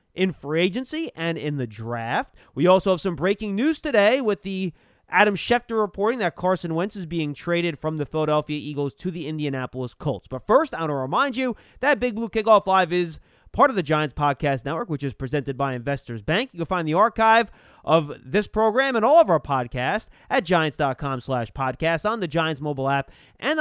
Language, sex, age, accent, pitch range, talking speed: English, male, 30-49, American, 160-230 Hz, 205 wpm